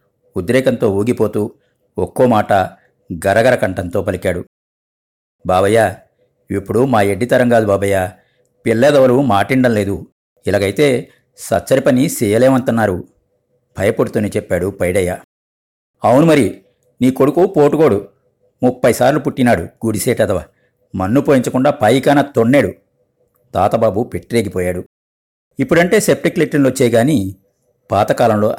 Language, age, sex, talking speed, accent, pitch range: Telugu, 50-69, male, 90 wpm, native, 100-135 Hz